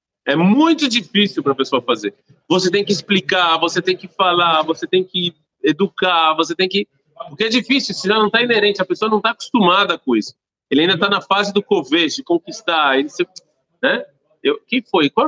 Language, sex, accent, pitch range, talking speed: Portuguese, male, Brazilian, 155-220 Hz, 210 wpm